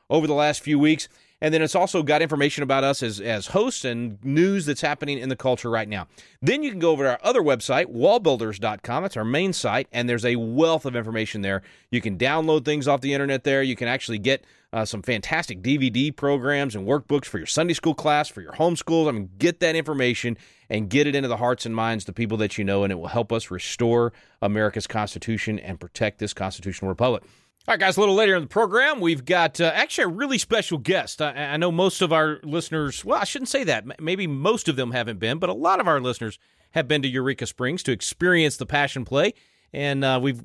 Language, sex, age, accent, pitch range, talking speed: English, male, 30-49, American, 120-165 Hz, 235 wpm